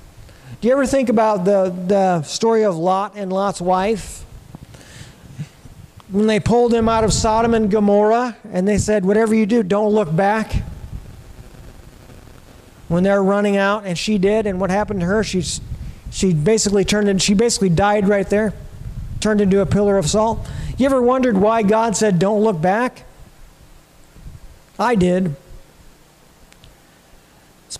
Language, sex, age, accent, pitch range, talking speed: English, male, 50-69, American, 185-230 Hz, 155 wpm